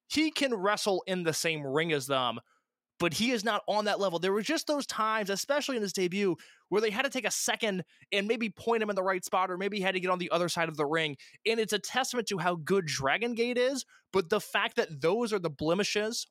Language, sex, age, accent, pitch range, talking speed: English, male, 20-39, American, 155-205 Hz, 260 wpm